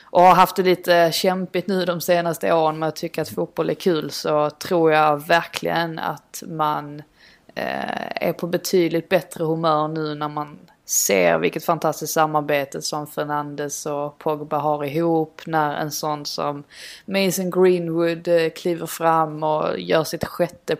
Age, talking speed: 20-39, 155 wpm